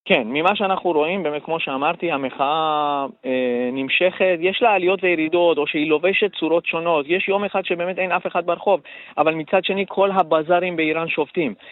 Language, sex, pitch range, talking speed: Hebrew, male, 150-185 Hz, 175 wpm